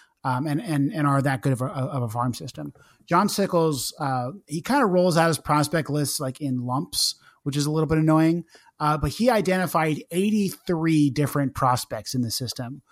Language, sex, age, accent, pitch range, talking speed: English, male, 30-49, American, 140-170 Hz, 200 wpm